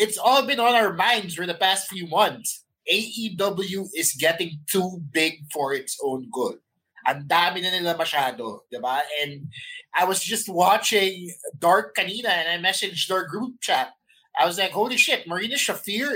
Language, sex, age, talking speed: English, male, 20-39, 165 wpm